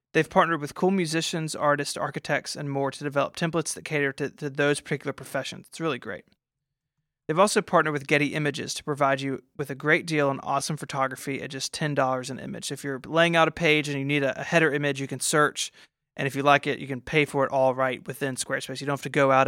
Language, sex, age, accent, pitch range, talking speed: English, male, 30-49, American, 135-155 Hz, 245 wpm